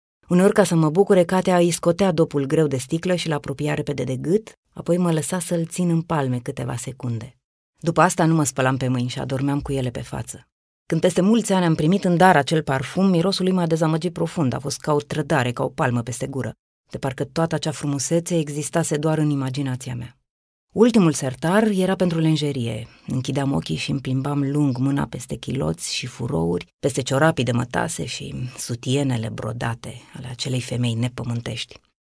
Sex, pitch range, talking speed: female, 130-165 Hz, 190 wpm